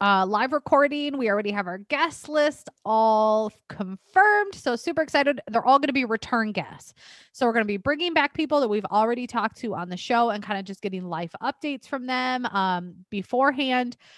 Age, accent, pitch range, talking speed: 20-39, American, 200-280 Hz, 205 wpm